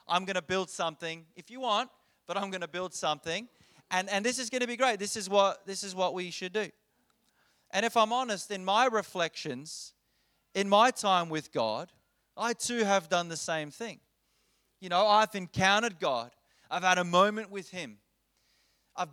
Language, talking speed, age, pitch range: English, 195 wpm, 30-49, 165-210 Hz